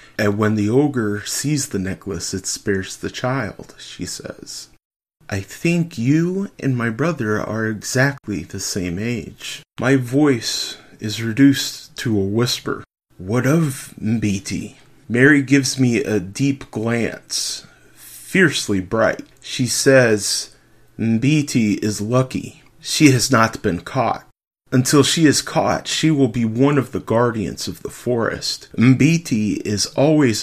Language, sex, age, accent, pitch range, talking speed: English, male, 30-49, American, 105-140 Hz, 135 wpm